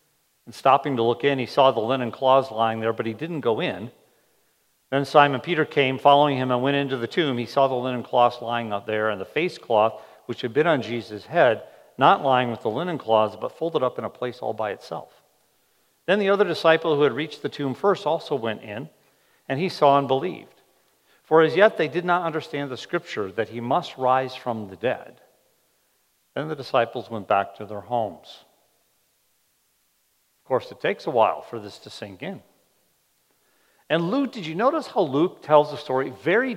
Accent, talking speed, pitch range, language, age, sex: American, 205 wpm, 120-160 Hz, English, 50-69, male